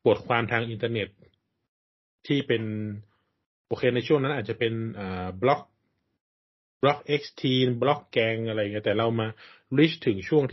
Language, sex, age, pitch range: Thai, male, 20-39, 105-125 Hz